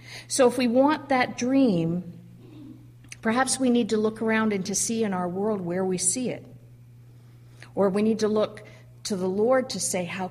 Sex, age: female, 50-69